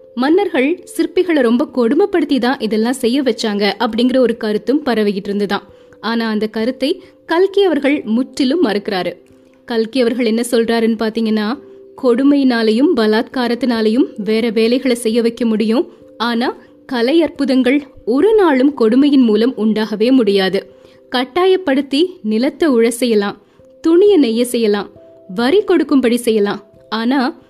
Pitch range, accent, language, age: 220-285 Hz, native, Tamil, 20-39